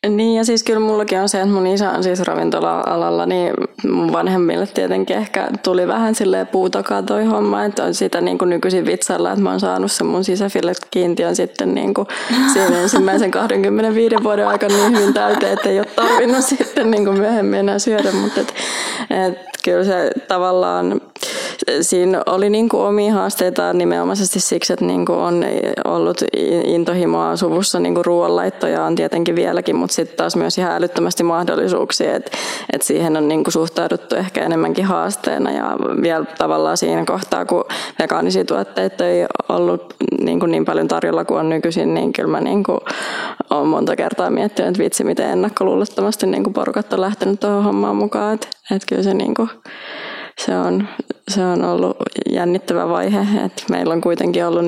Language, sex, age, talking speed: Finnish, female, 20-39, 170 wpm